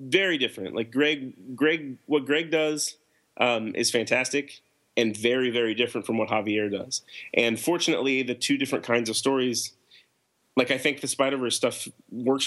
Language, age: English, 30-49